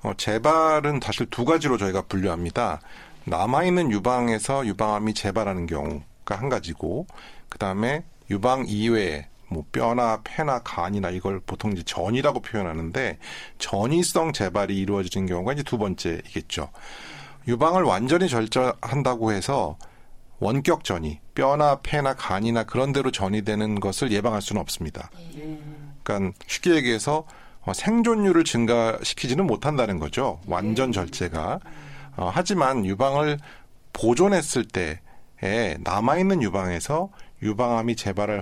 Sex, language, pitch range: male, Korean, 100-145 Hz